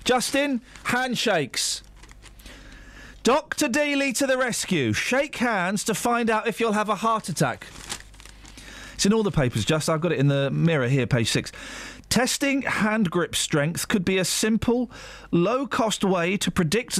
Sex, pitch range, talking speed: male, 155-225 Hz, 160 wpm